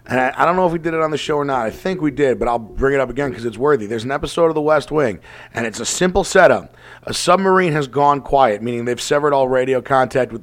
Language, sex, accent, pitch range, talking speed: English, male, American, 125-155 Hz, 290 wpm